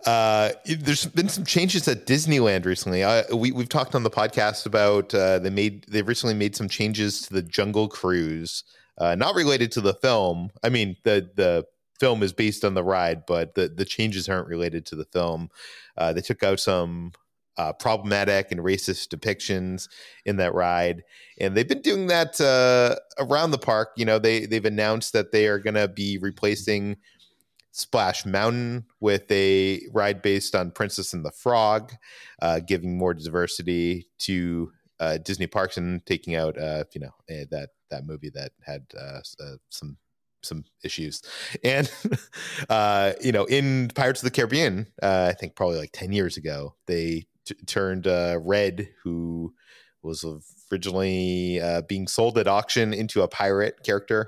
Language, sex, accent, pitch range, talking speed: English, male, American, 90-110 Hz, 170 wpm